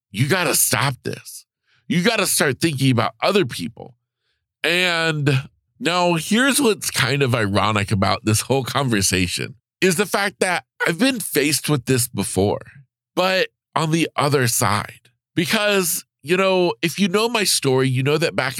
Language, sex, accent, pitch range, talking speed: English, male, American, 120-160 Hz, 165 wpm